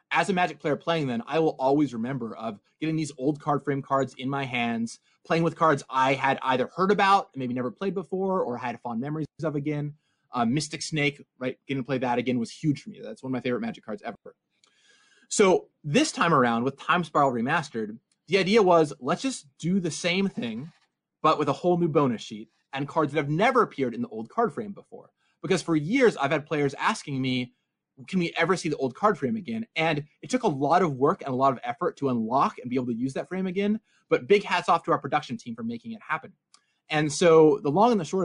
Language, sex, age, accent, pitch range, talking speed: English, male, 30-49, American, 135-180 Hz, 240 wpm